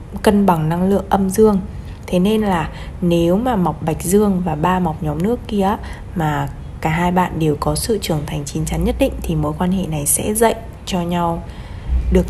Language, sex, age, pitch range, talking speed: Vietnamese, female, 20-39, 155-200 Hz, 210 wpm